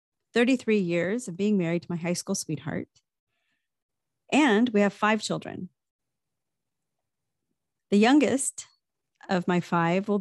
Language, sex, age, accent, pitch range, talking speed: English, female, 30-49, American, 180-235 Hz, 125 wpm